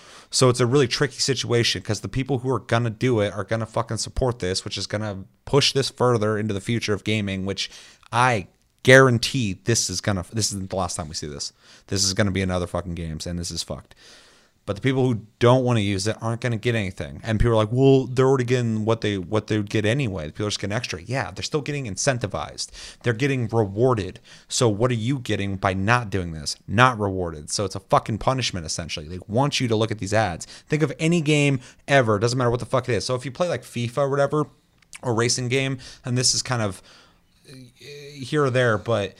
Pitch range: 100-125 Hz